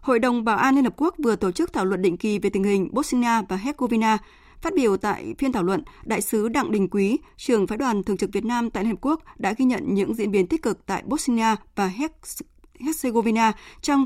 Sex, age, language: female, 20-39, Vietnamese